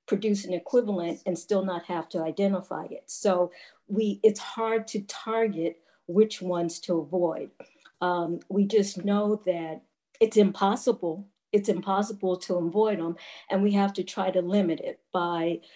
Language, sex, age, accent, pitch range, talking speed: English, female, 50-69, American, 175-210 Hz, 155 wpm